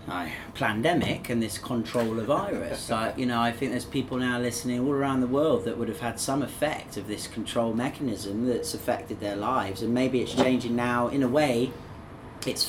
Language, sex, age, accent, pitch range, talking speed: English, male, 30-49, British, 105-125 Hz, 195 wpm